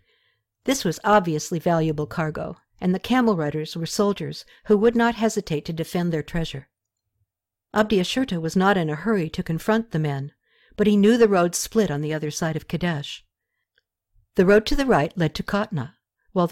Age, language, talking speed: 60-79, English, 180 wpm